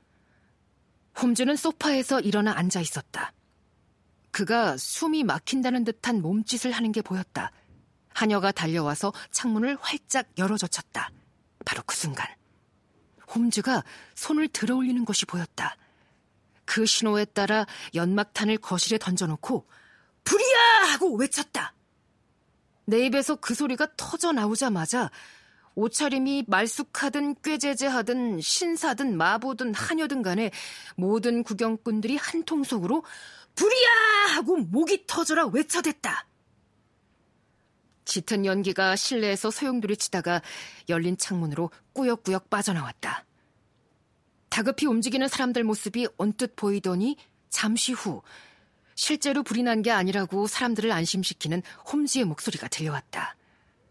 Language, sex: Korean, female